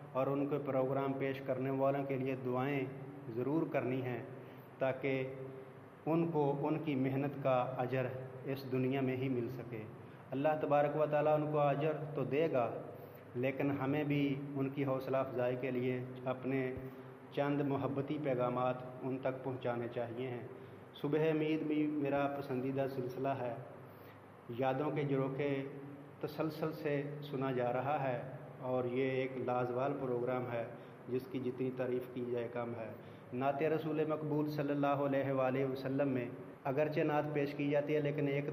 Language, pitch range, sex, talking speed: Urdu, 130-145 Hz, male, 160 wpm